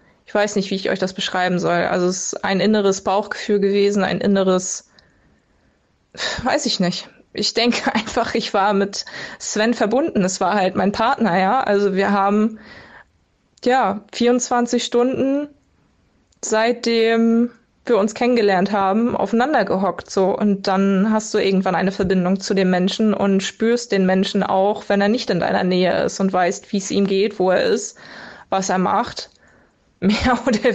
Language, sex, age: German, female, 20-39